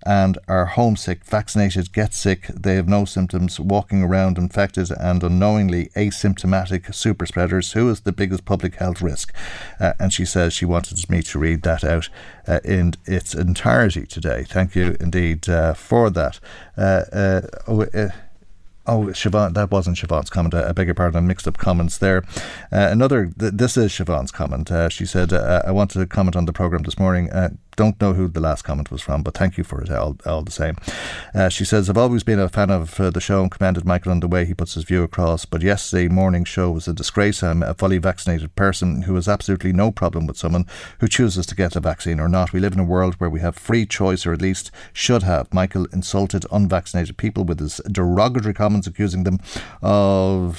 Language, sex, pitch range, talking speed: English, male, 85-100 Hz, 215 wpm